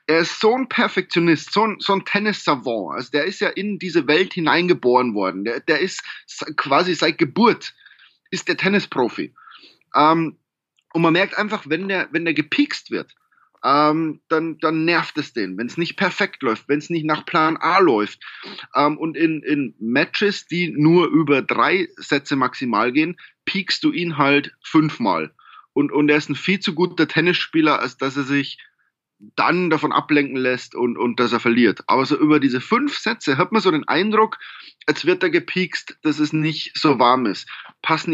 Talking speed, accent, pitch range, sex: 185 wpm, German, 150-205 Hz, male